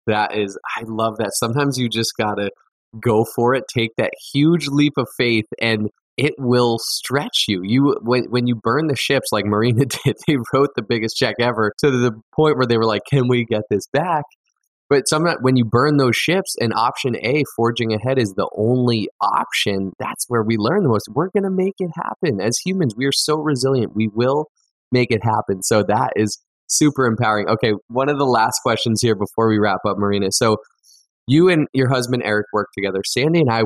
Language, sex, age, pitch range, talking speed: English, male, 20-39, 105-130 Hz, 210 wpm